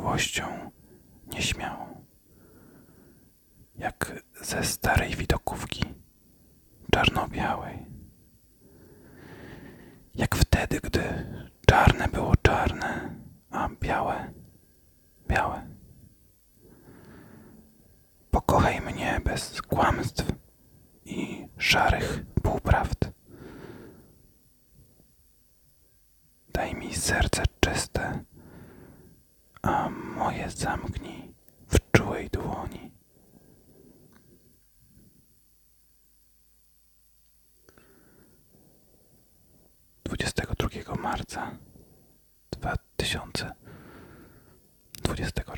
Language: Polish